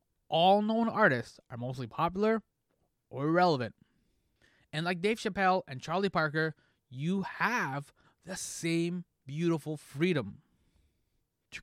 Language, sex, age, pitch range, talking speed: English, male, 20-39, 130-180 Hz, 115 wpm